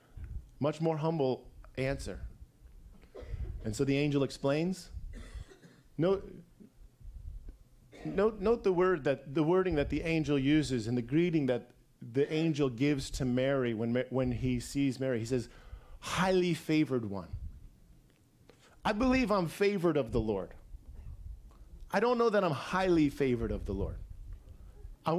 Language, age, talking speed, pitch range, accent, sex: English, 40-59, 140 wpm, 120-165 Hz, American, male